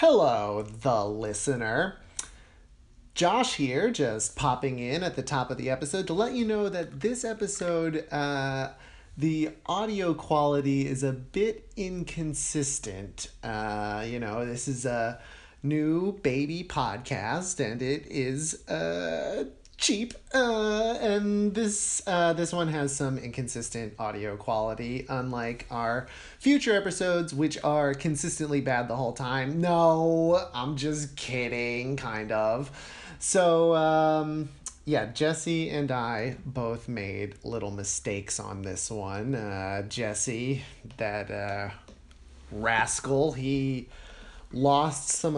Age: 30-49